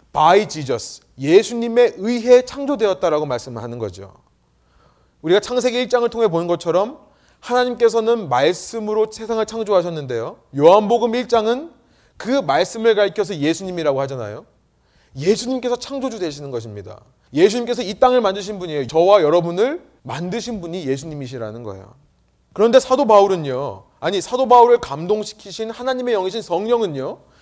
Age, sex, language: 30-49, male, Korean